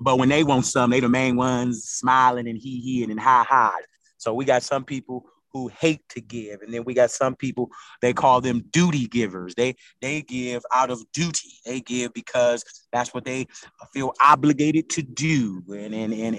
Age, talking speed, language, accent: 30-49, 200 wpm, English, American